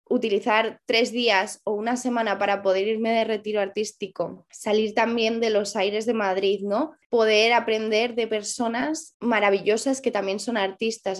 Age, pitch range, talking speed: 20-39, 200-235 Hz, 155 wpm